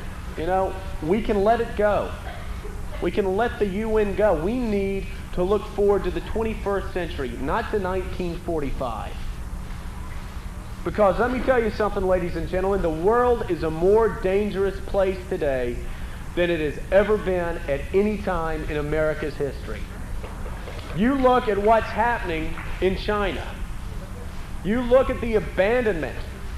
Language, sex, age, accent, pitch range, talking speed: English, male, 40-59, American, 185-270 Hz, 145 wpm